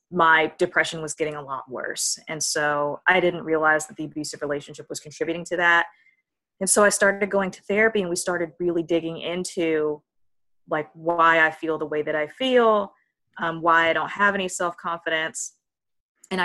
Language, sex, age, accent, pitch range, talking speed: English, female, 20-39, American, 155-185 Hz, 180 wpm